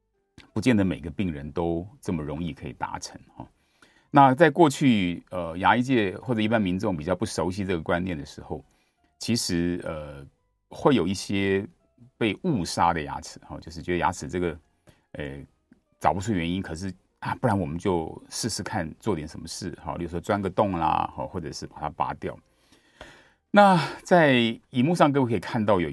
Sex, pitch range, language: male, 85-110 Hz, Chinese